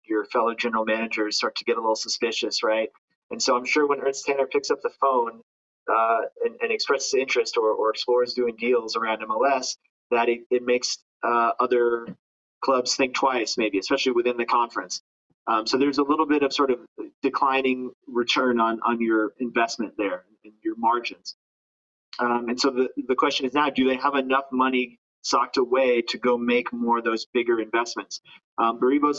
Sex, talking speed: male, 190 wpm